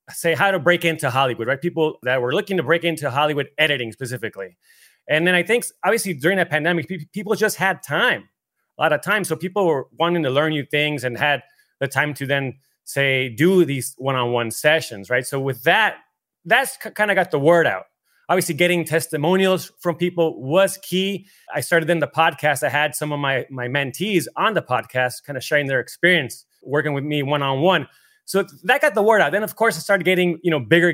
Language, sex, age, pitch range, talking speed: English, male, 30-49, 135-175 Hz, 210 wpm